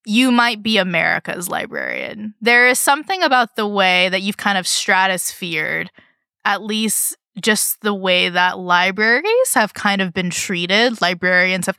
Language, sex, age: English, female, 20-39